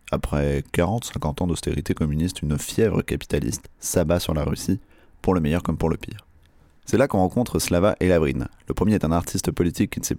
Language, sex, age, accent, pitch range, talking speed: French, male, 30-49, French, 80-95 Hz, 205 wpm